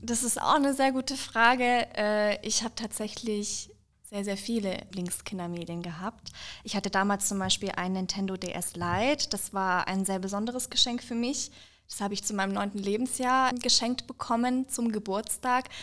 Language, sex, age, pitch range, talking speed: German, female, 20-39, 200-235 Hz, 165 wpm